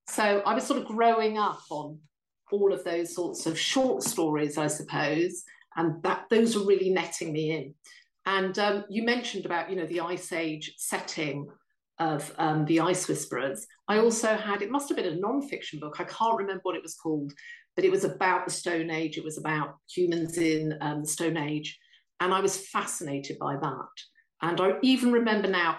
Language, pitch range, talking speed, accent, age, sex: English, 160-200 Hz, 195 wpm, British, 50-69, female